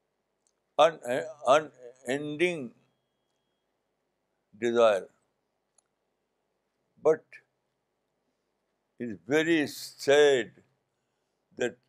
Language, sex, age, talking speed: Urdu, male, 60-79, 50 wpm